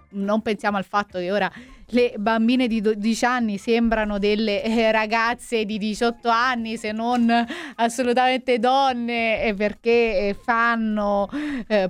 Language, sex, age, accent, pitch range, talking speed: Italian, female, 30-49, native, 205-265 Hz, 120 wpm